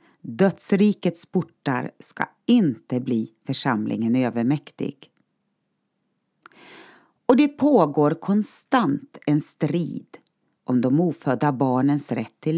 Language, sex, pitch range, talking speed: Swedish, female, 140-225 Hz, 90 wpm